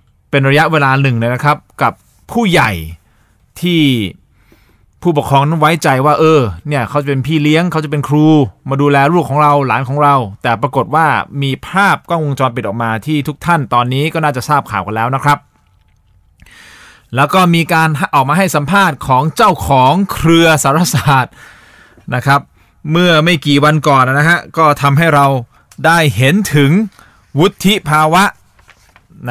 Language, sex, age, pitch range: Thai, male, 20-39, 115-150 Hz